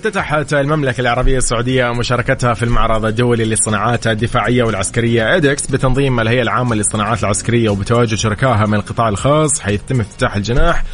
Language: English